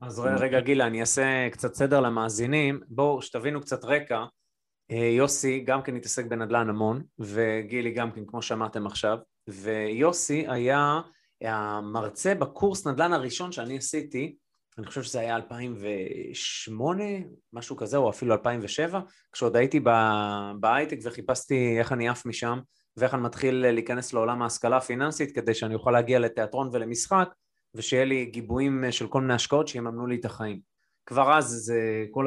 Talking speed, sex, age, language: 145 wpm, male, 20-39, Hebrew